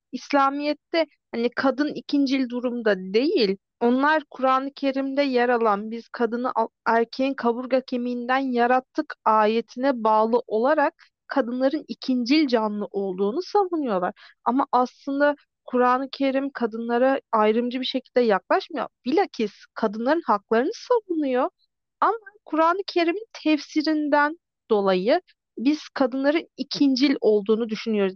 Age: 40-59